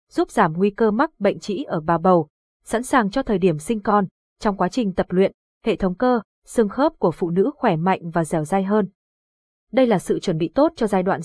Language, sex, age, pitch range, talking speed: Vietnamese, female, 20-39, 180-230 Hz, 240 wpm